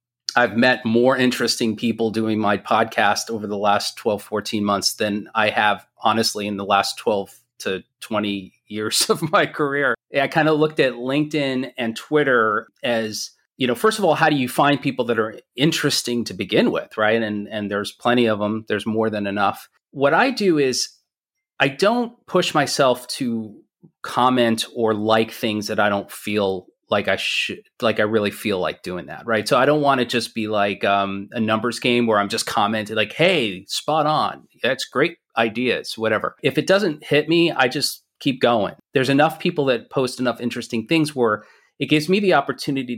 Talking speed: 195 wpm